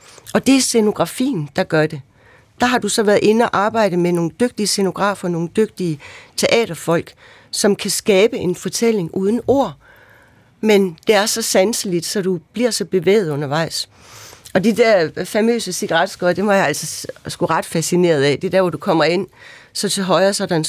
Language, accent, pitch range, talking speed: Danish, native, 160-220 Hz, 190 wpm